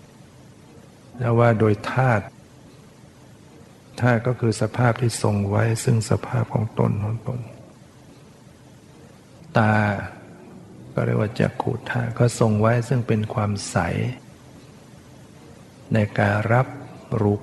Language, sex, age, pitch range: Thai, male, 60-79, 105-120 Hz